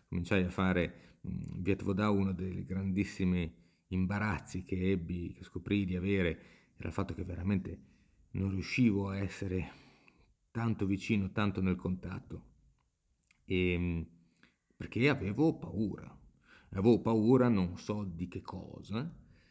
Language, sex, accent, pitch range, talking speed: Italian, male, native, 85-105 Hz, 125 wpm